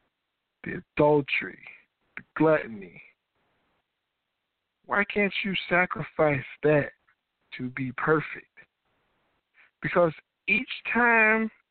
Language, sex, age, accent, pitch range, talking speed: English, male, 50-69, American, 160-225 Hz, 75 wpm